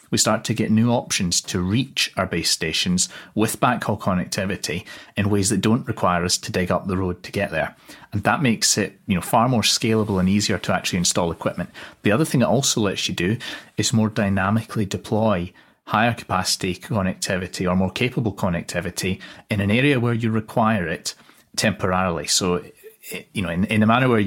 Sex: male